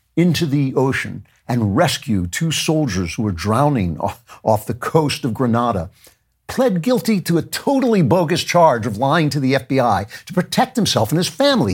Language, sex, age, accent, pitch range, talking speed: English, male, 50-69, American, 105-155 Hz, 175 wpm